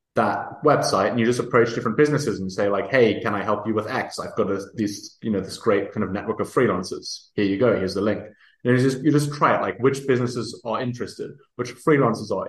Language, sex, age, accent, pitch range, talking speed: English, male, 20-39, British, 100-120 Hz, 250 wpm